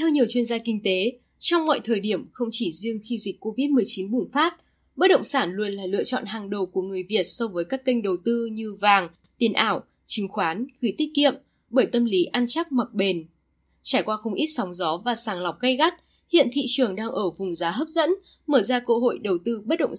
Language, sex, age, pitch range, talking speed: Vietnamese, female, 10-29, 200-270 Hz, 240 wpm